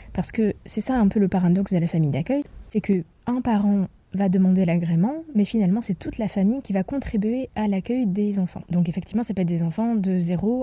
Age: 20-39